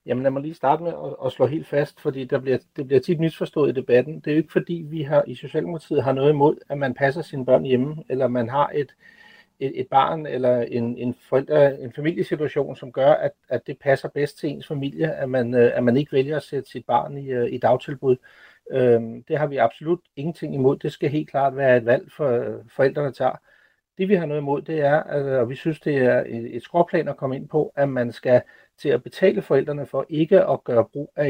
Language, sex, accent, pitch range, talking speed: Danish, male, native, 130-160 Hz, 230 wpm